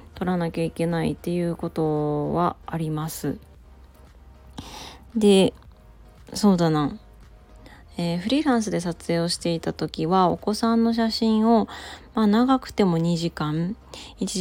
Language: Japanese